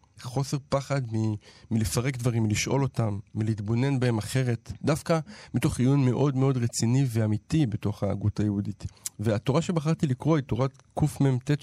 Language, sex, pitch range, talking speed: Hebrew, male, 105-130 Hz, 135 wpm